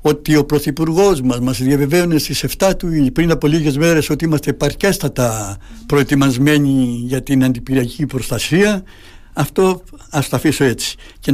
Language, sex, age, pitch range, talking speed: Greek, male, 60-79, 130-150 Hz, 150 wpm